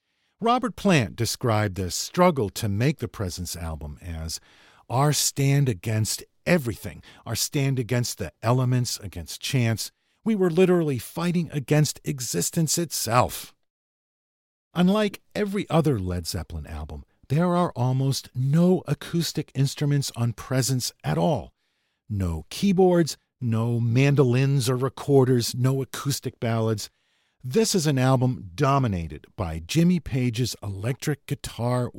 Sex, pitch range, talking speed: male, 95-145 Hz, 120 wpm